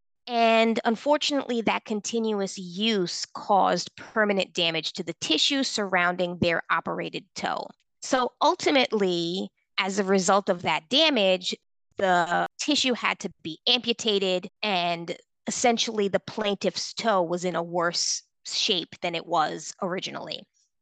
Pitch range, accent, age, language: 180-230 Hz, American, 20-39, English